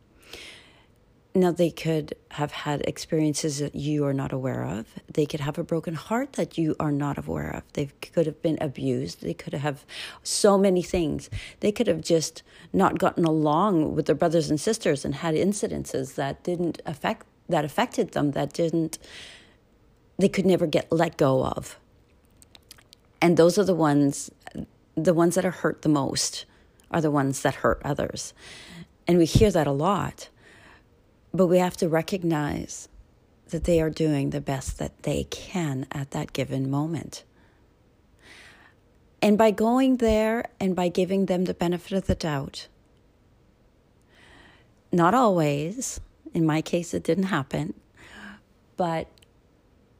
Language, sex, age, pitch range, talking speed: English, female, 40-59, 145-180 Hz, 155 wpm